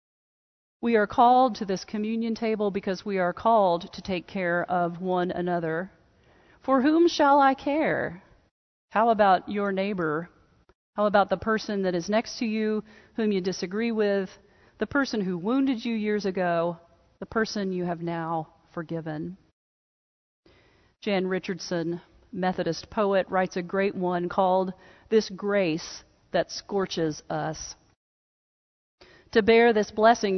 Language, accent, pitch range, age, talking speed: English, American, 180-235 Hz, 40-59, 140 wpm